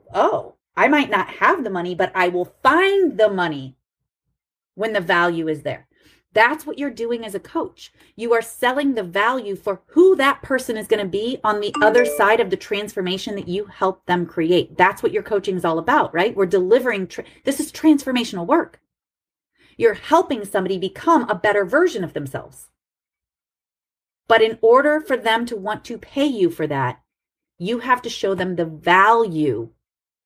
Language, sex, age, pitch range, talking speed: English, female, 30-49, 185-280 Hz, 180 wpm